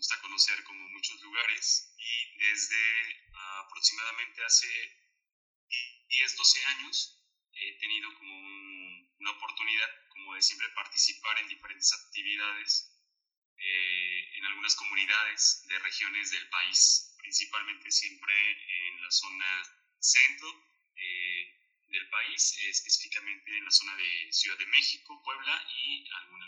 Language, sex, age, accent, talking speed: Spanish, male, 20-39, Mexican, 120 wpm